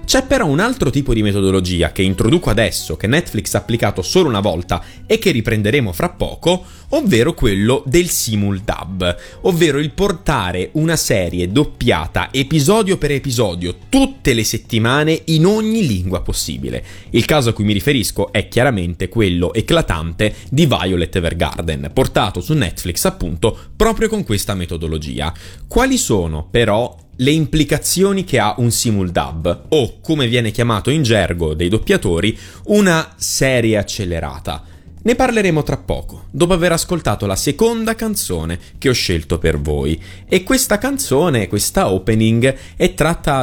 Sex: male